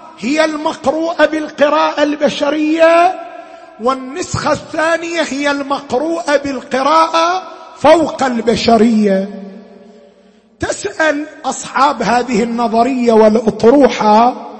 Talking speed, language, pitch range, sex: 65 wpm, Arabic, 240-305 Hz, male